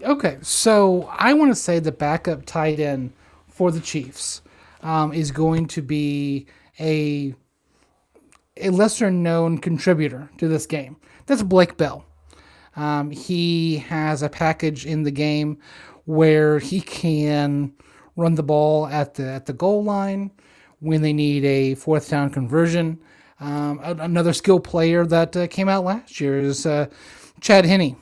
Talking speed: 150 wpm